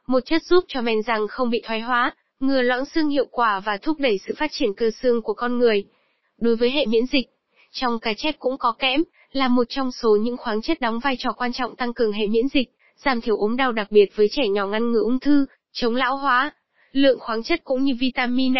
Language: Vietnamese